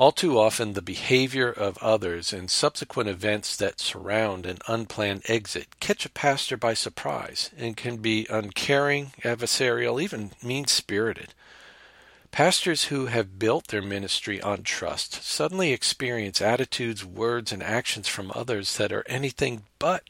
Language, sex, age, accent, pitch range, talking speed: English, male, 50-69, American, 105-140 Hz, 140 wpm